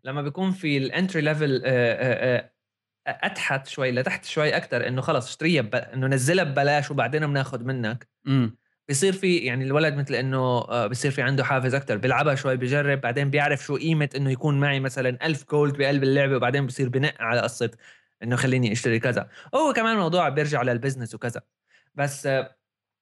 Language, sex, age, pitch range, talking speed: Arabic, male, 20-39, 125-150 Hz, 165 wpm